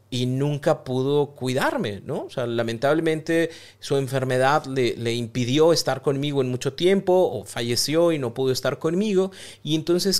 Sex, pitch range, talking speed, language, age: male, 125-165 Hz, 160 wpm, Spanish, 30-49